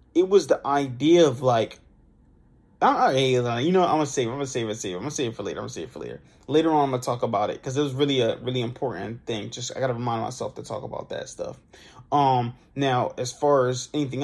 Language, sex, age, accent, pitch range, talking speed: English, male, 20-39, American, 125-155 Hz, 265 wpm